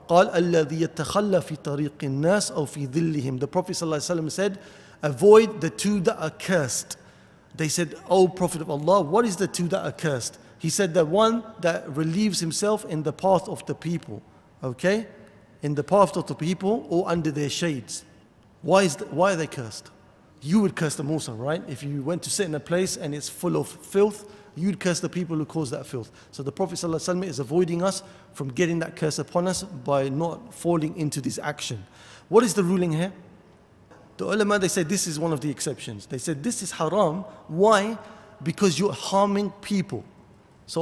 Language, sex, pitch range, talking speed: English, male, 145-190 Hz, 180 wpm